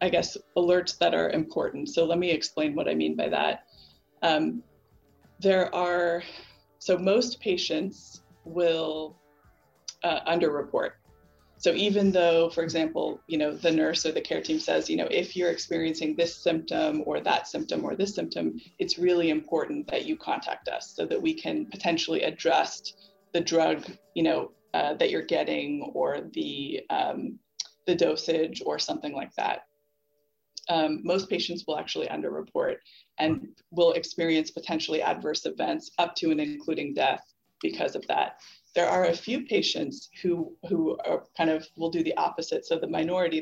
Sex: female